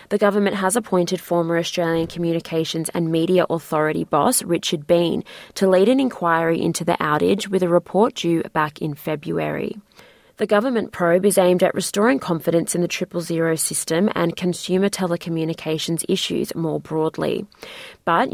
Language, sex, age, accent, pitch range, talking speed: English, female, 20-39, Australian, 135-180 Hz, 155 wpm